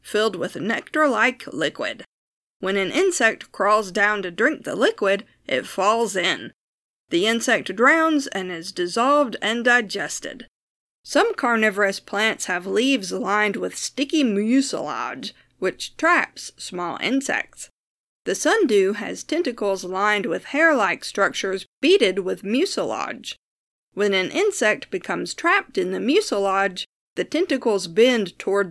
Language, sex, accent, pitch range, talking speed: English, female, American, 200-290 Hz, 125 wpm